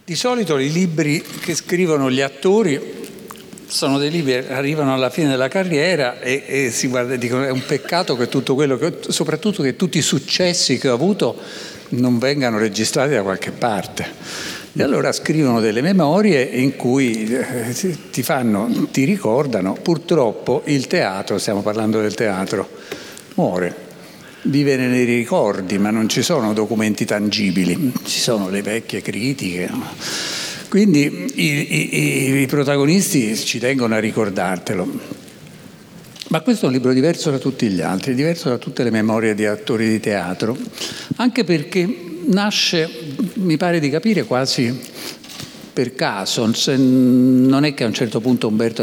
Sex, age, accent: male, 60-79, native